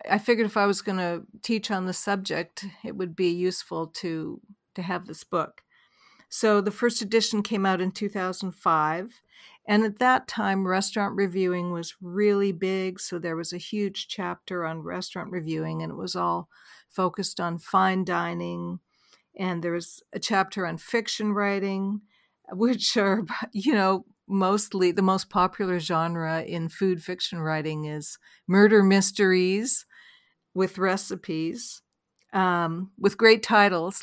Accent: American